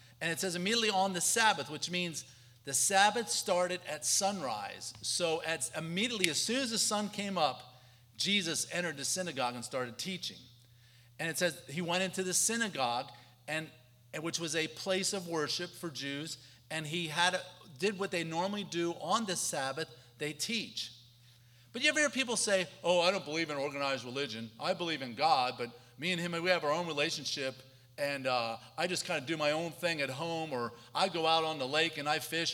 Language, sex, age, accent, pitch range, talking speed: English, male, 40-59, American, 130-185 Hz, 205 wpm